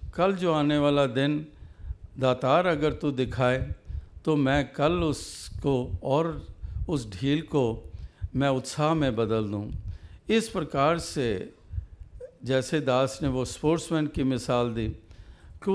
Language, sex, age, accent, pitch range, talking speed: Hindi, male, 60-79, native, 110-155 Hz, 130 wpm